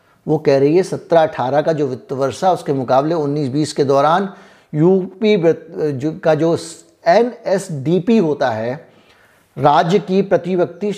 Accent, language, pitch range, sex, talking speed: native, Hindi, 140-180 Hz, male, 140 wpm